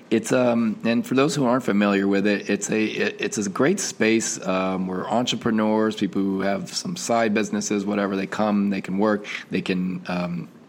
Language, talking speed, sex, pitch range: English, 190 wpm, male, 95-110 Hz